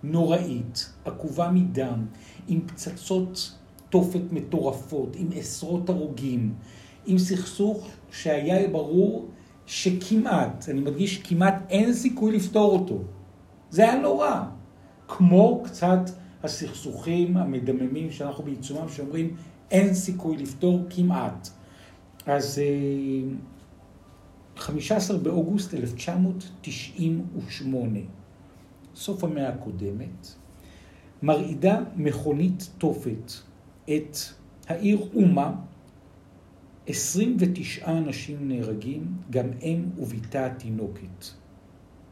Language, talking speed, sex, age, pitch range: Hebrew, 80 wpm, male, 60-79, 120-180 Hz